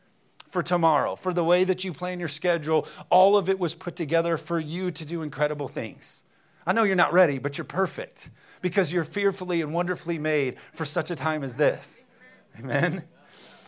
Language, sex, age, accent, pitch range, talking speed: English, male, 40-59, American, 145-175 Hz, 190 wpm